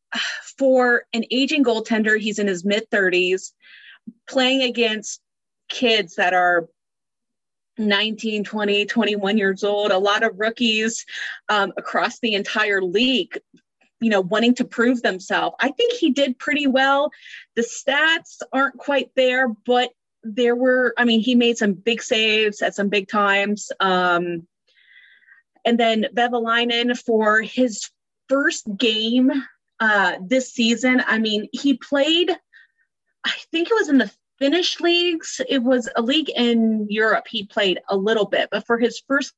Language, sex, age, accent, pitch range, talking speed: English, female, 30-49, American, 210-255 Hz, 150 wpm